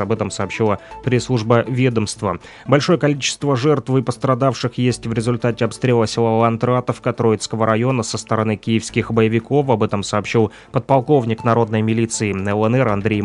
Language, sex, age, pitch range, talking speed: Russian, male, 20-39, 110-130 Hz, 135 wpm